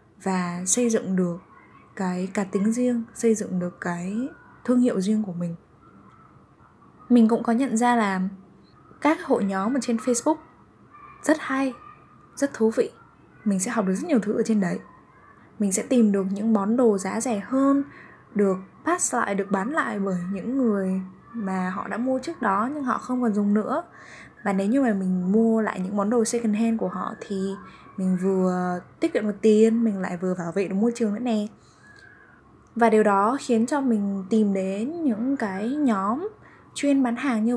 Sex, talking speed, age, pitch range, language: female, 195 wpm, 10-29, 190-240 Hz, Vietnamese